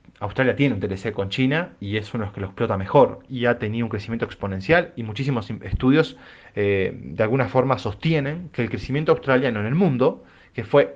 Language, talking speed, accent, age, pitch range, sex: English, 210 wpm, Argentinian, 30-49, 105-140 Hz, male